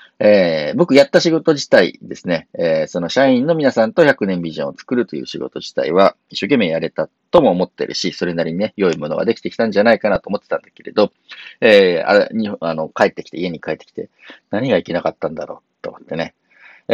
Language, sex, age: Japanese, male, 40-59